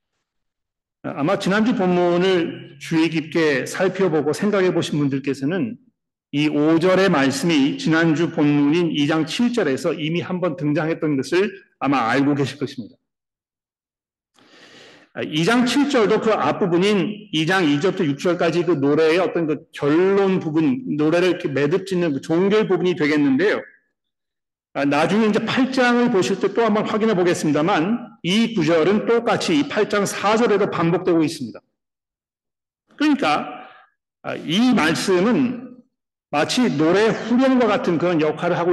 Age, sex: 40-59, male